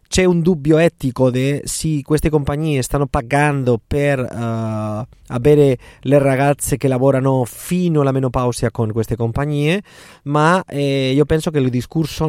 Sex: male